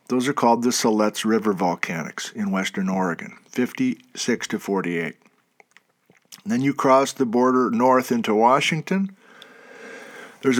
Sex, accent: male, American